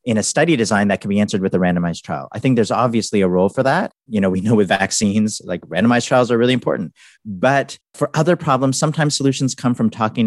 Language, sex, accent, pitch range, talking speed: English, male, American, 100-130 Hz, 240 wpm